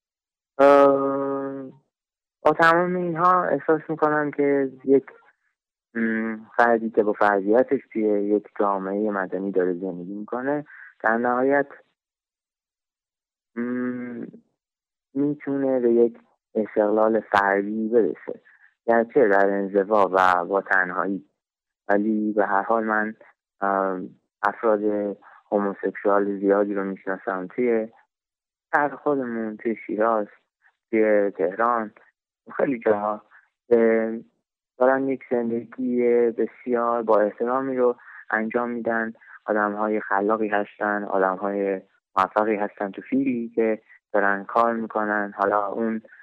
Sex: male